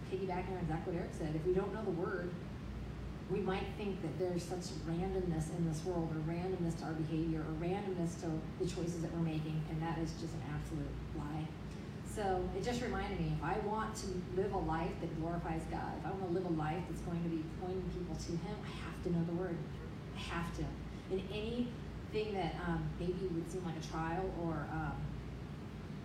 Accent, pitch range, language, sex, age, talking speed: American, 160-185 Hz, English, female, 30-49, 215 wpm